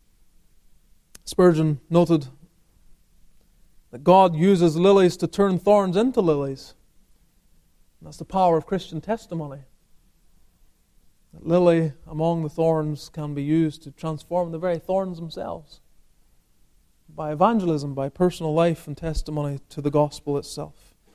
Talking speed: 120 wpm